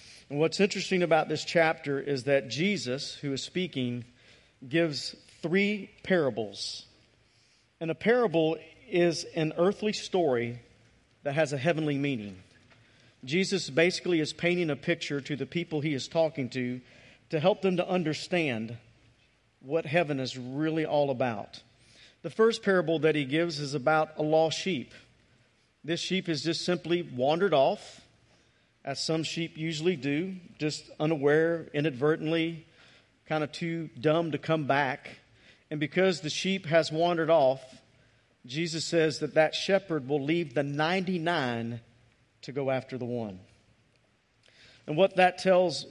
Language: English